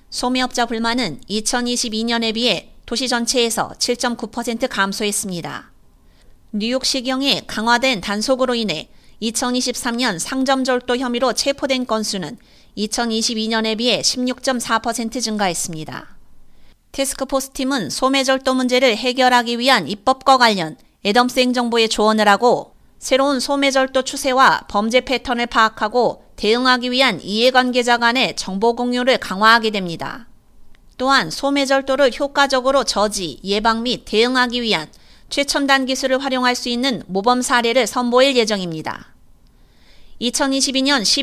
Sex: female